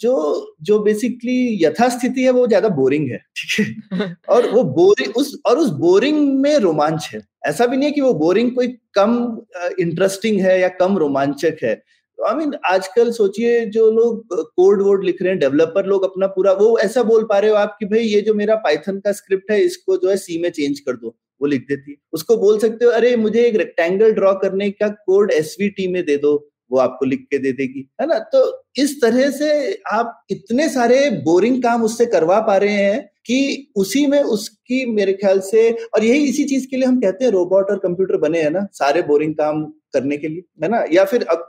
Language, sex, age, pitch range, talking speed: Hindi, male, 30-49, 185-245 Hz, 215 wpm